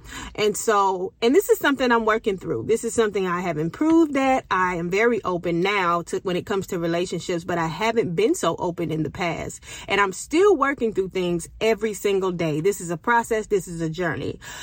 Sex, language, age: female, English, 30-49